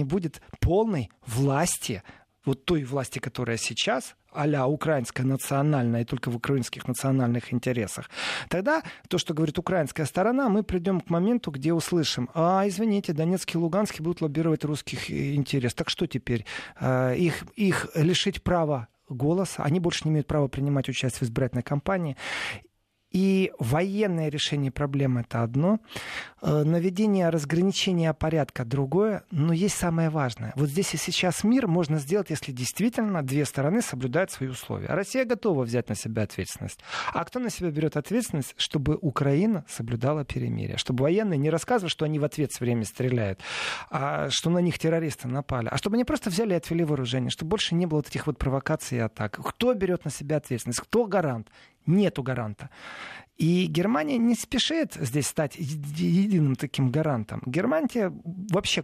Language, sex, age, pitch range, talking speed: Russian, male, 40-59, 130-180 Hz, 155 wpm